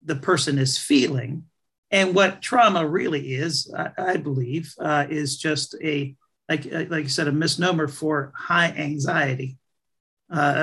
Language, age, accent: English, 50-69, American